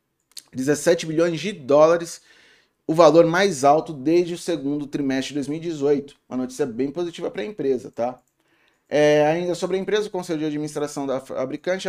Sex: male